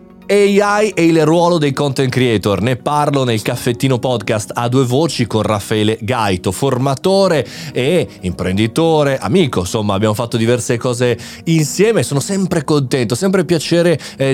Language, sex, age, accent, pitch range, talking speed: Italian, male, 30-49, native, 110-160 Hz, 145 wpm